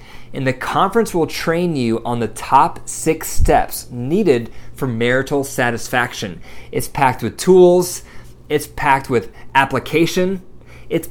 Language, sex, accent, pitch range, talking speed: English, male, American, 120-160 Hz, 130 wpm